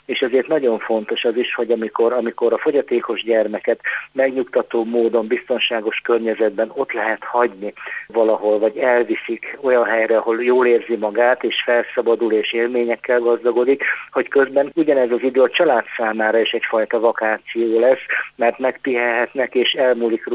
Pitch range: 110-125 Hz